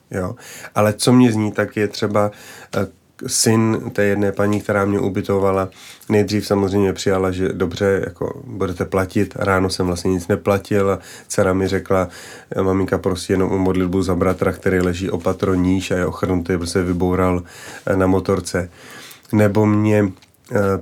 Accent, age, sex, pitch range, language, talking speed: native, 30-49, male, 95-105 Hz, Czech, 155 wpm